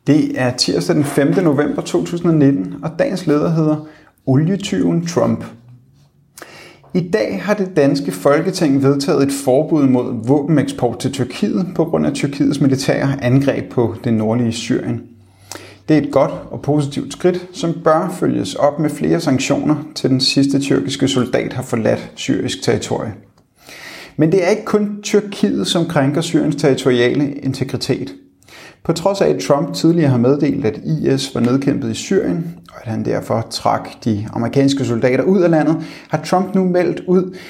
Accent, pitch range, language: native, 130-160 Hz, Danish